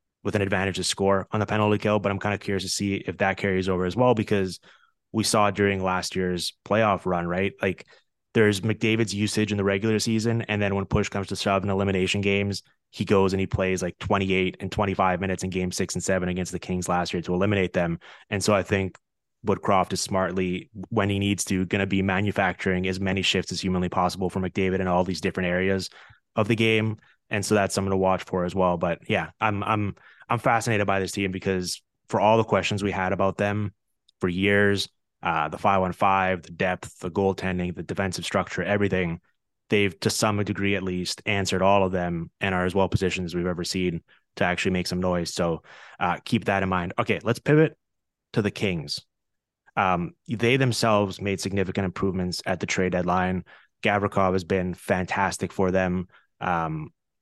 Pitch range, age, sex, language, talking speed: 90-105 Hz, 20-39, male, English, 205 wpm